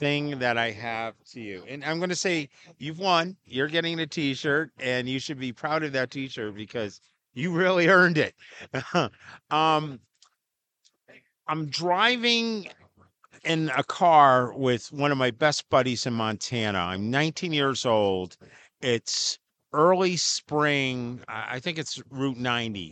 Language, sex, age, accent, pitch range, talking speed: English, male, 50-69, American, 120-160 Hz, 145 wpm